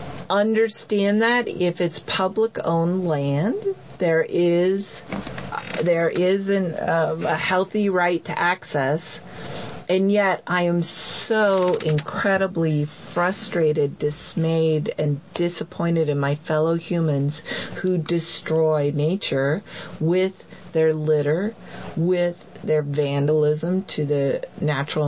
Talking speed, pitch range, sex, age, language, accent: 105 wpm, 150-190 Hz, female, 40-59, English, American